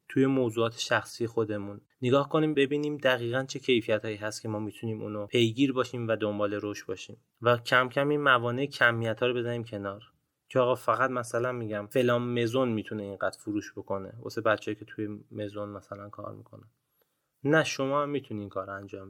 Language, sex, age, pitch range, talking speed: Persian, male, 20-39, 110-130 Hz, 180 wpm